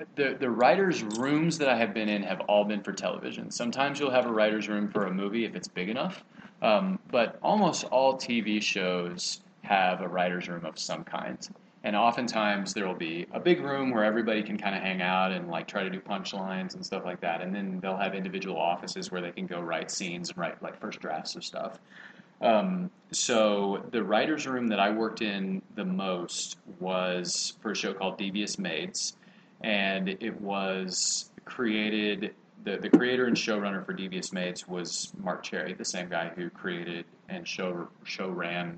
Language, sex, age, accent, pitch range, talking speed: English, male, 30-49, American, 95-125 Hz, 195 wpm